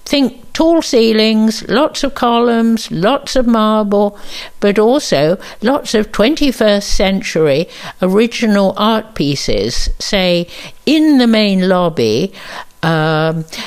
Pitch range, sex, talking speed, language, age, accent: 165-225 Hz, female, 105 wpm, English, 60-79, British